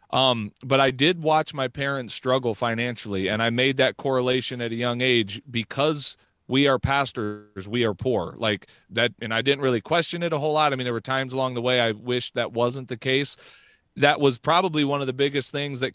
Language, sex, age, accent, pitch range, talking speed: English, male, 40-59, American, 120-140 Hz, 220 wpm